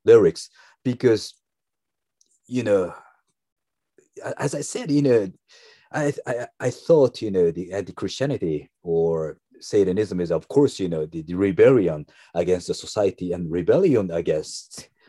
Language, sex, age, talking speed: English, male, 50-69, 130 wpm